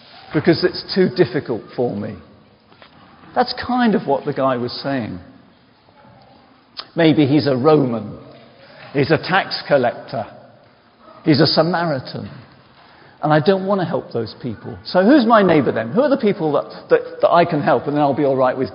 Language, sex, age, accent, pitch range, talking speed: English, male, 50-69, British, 140-205 Hz, 175 wpm